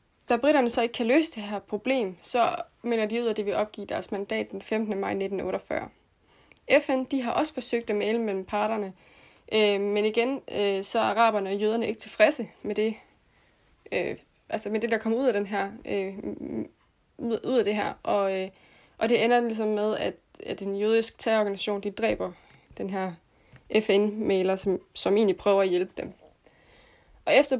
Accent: native